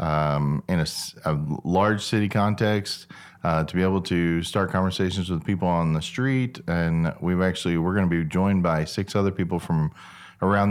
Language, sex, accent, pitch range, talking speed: English, male, American, 85-95 Hz, 185 wpm